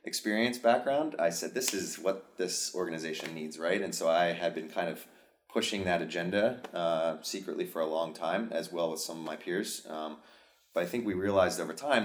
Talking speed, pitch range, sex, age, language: 210 wpm, 80-85 Hz, male, 30-49, English